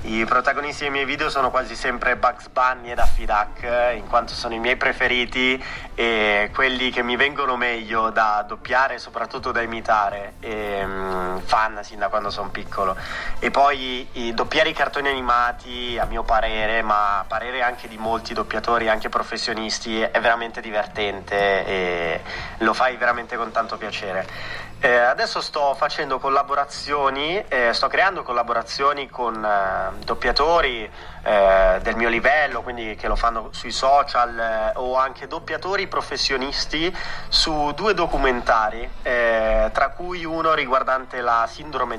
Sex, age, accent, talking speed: male, 30-49, native, 145 wpm